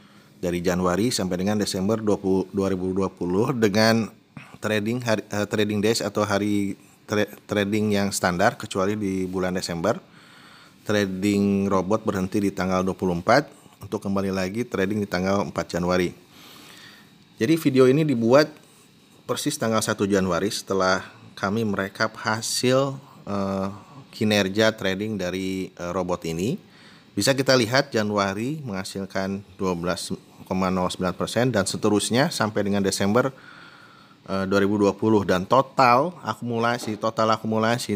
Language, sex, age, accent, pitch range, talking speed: Indonesian, male, 30-49, native, 95-115 Hz, 115 wpm